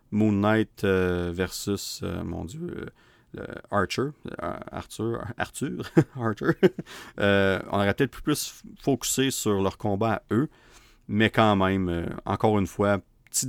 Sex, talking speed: male, 145 wpm